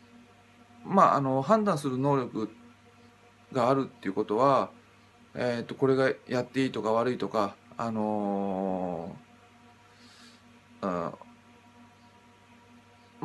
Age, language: 20-39, Japanese